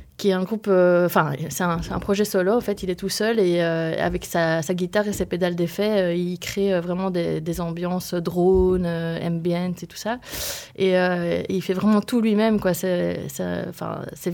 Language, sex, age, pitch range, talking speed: French, female, 20-39, 175-205 Hz, 210 wpm